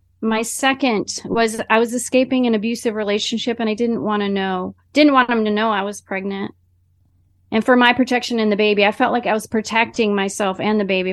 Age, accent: 30-49, American